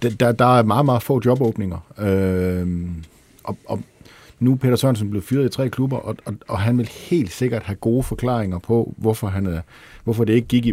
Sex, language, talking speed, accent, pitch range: male, Danish, 205 wpm, native, 90-120 Hz